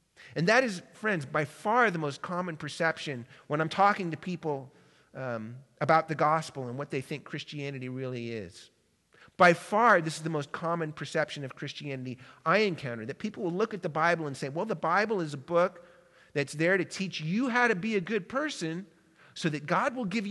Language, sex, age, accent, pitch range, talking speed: English, male, 40-59, American, 150-205 Hz, 205 wpm